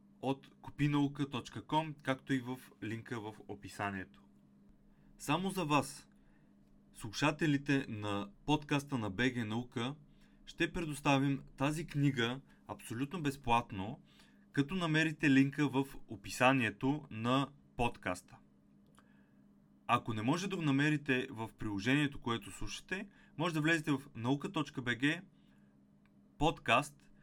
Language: Bulgarian